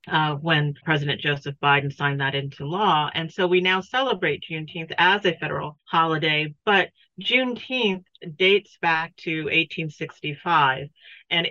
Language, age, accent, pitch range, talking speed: English, 40-59, American, 150-180 Hz, 135 wpm